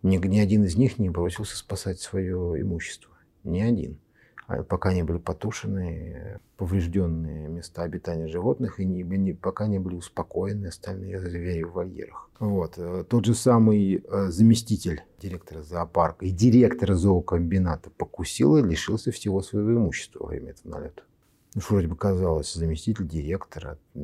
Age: 50-69